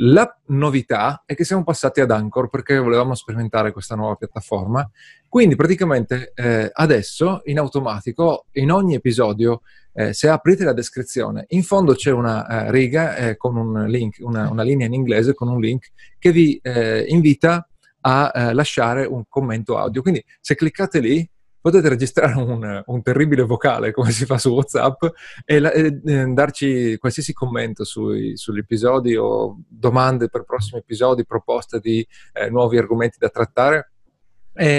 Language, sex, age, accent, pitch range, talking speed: Italian, male, 30-49, native, 115-145 Hz, 145 wpm